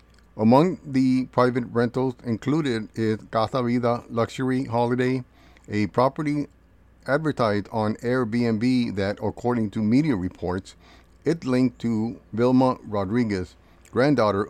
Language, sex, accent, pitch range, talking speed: English, male, American, 100-125 Hz, 110 wpm